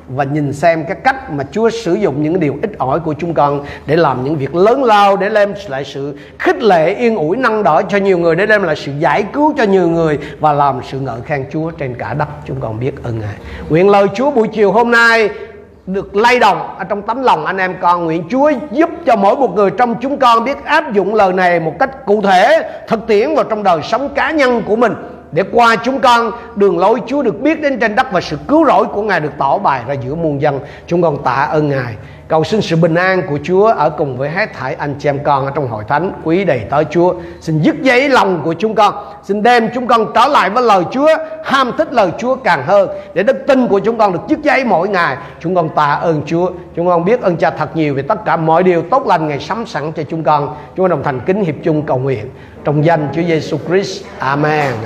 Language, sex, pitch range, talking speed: Vietnamese, male, 150-225 Hz, 255 wpm